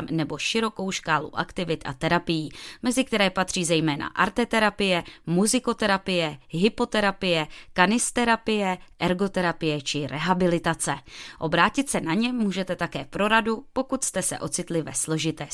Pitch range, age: 155-205 Hz, 20-39